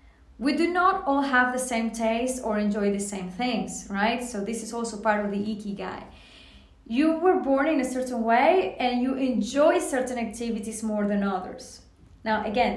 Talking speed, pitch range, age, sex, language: 185 wpm, 210-255 Hz, 20-39, female, English